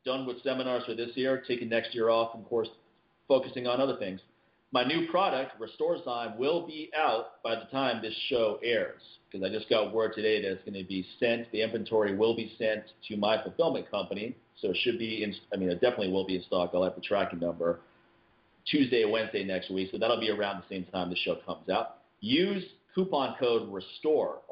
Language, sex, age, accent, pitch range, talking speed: English, male, 40-59, American, 105-145 Hz, 210 wpm